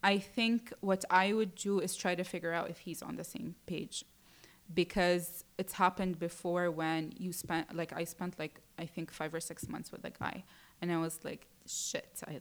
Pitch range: 170-195 Hz